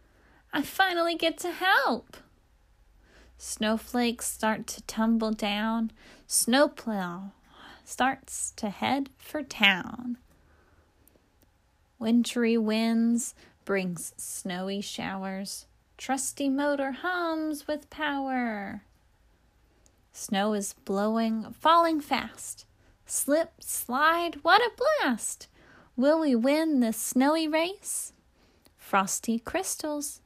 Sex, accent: female, American